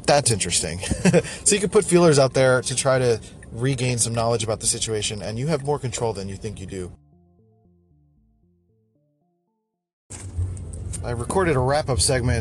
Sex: male